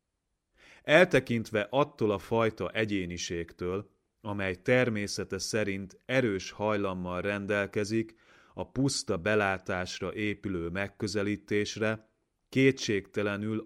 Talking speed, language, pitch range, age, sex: 75 wpm, Hungarian, 95-110 Hz, 30-49, male